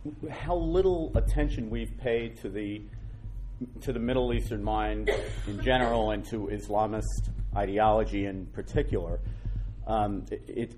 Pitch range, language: 105-120 Hz, English